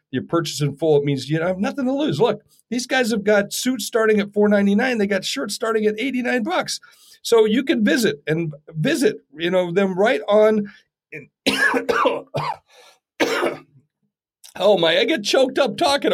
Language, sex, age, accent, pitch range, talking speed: English, male, 50-69, American, 150-215 Hz, 185 wpm